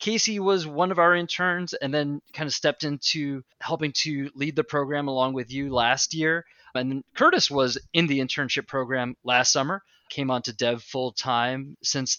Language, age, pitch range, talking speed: English, 20-39, 135-170 Hz, 180 wpm